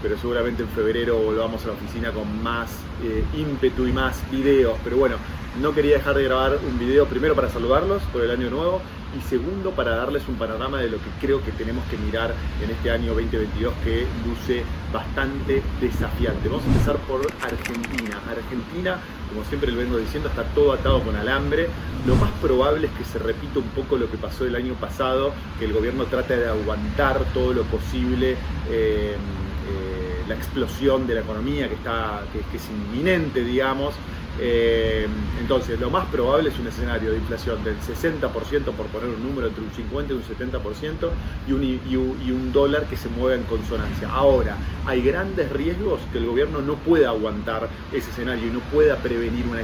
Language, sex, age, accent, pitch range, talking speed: Spanish, male, 30-49, Argentinian, 100-130 Hz, 185 wpm